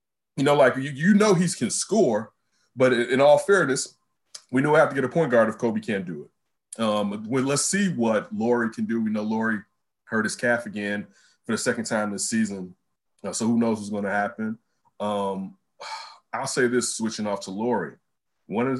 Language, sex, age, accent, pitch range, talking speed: English, male, 30-49, American, 105-145 Hz, 185 wpm